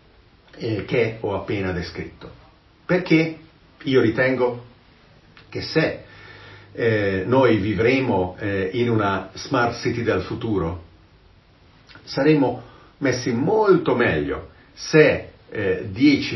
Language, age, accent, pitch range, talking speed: Italian, 50-69, native, 95-120 Hz, 95 wpm